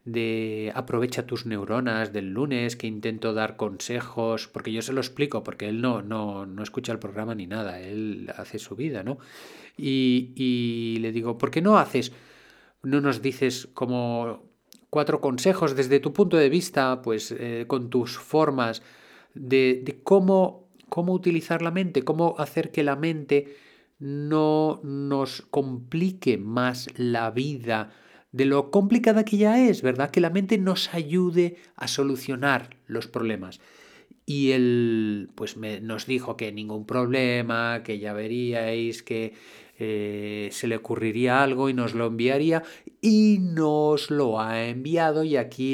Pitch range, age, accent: 110-140 Hz, 30-49, Spanish